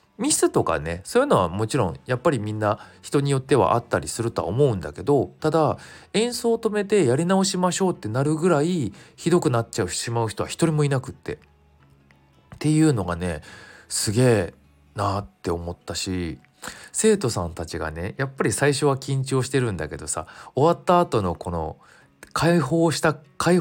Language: Japanese